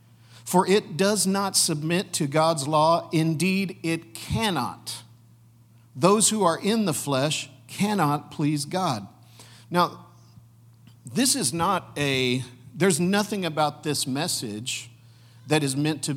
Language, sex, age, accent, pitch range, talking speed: English, male, 50-69, American, 120-160 Hz, 125 wpm